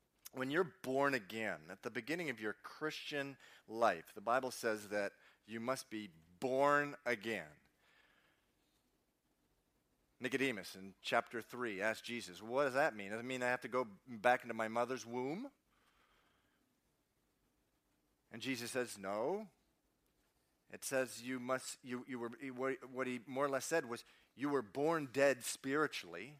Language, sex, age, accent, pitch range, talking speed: English, male, 40-59, American, 120-155 Hz, 150 wpm